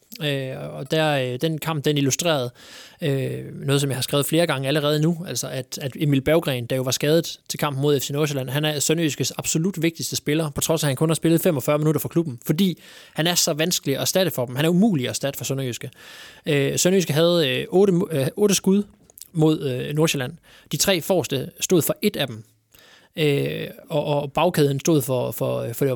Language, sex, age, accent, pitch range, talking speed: Danish, male, 20-39, native, 135-160 Hz, 215 wpm